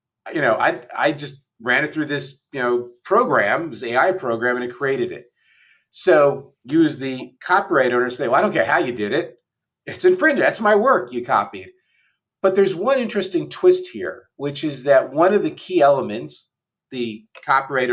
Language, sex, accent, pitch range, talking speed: English, male, American, 130-195 Hz, 190 wpm